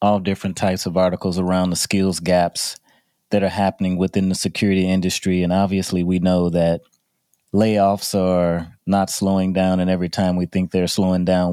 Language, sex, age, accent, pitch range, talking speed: English, male, 30-49, American, 85-100 Hz, 175 wpm